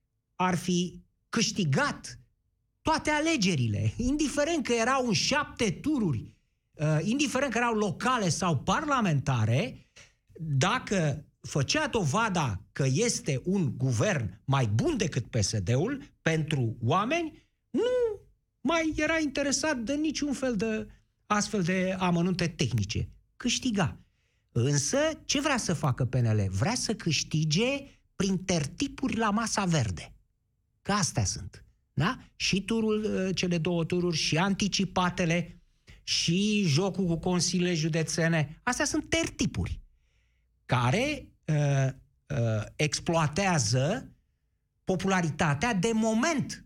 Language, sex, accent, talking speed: Romanian, male, native, 105 wpm